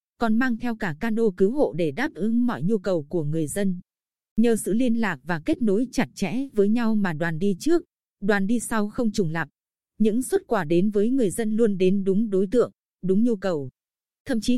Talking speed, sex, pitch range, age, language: 220 wpm, female, 185-235 Hz, 20-39, Vietnamese